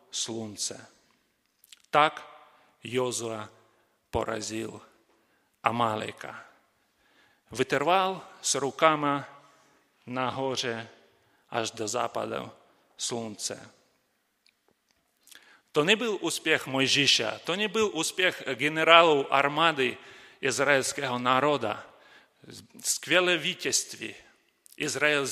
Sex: male